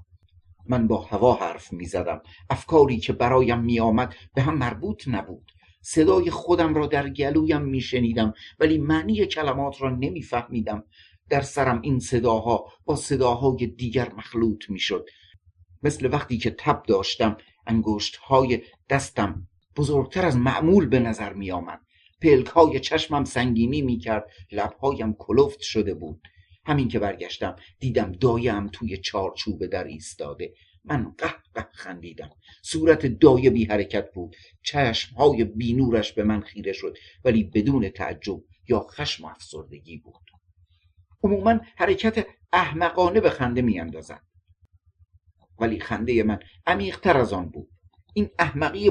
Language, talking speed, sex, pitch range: Persian, 125 wpm, male, 95-140 Hz